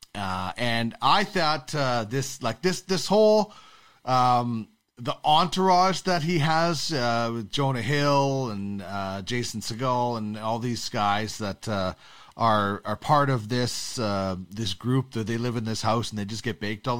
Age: 30-49